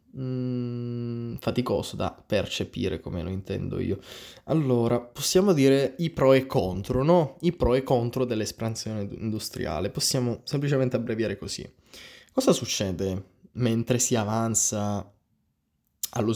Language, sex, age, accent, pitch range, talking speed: Italian, male, 20-39, native, 105-130 Hz, 115 wpm